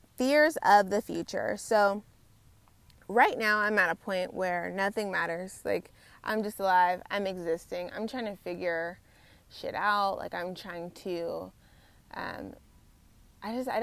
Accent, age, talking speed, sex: American, 20-39, 150 wpm, female